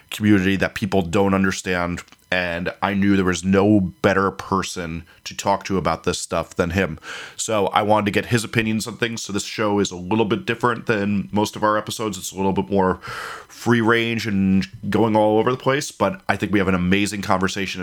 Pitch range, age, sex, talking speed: 90-105 Hz, 30-49, male, 215 wpm